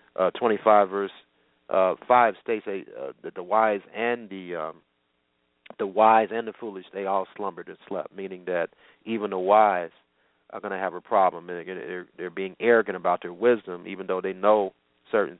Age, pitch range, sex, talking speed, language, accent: 40-59, 95-140 Hz, male, 185 wpm, English, American